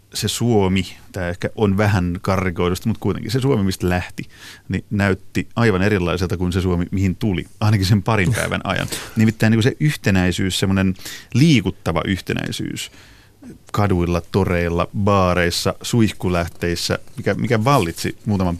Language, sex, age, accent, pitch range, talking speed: Finnish, male, 30-49, native, 90-110 Hz, 140 wpm